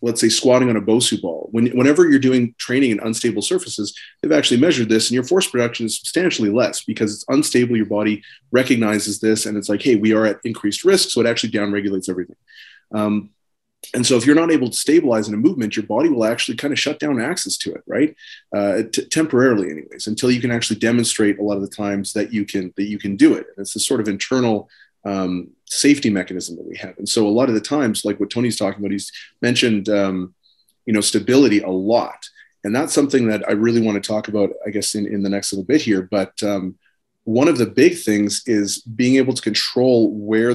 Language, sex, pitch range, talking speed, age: English, male, 100-115 Hz, 230 wpm, 30-49